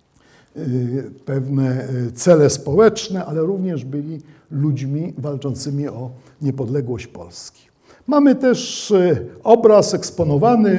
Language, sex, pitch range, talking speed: Polish, male, 140-200 Hz, 85 wpm